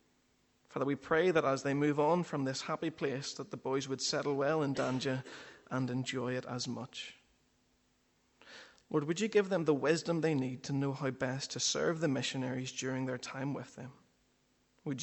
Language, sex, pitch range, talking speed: English, male, 130-150 Hz, 190 wpm